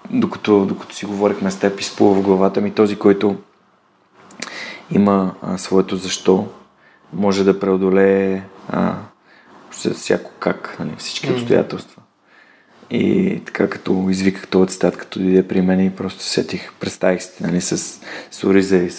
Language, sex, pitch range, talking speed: Bulgarian, male, 95-105 Hz, 140 wpm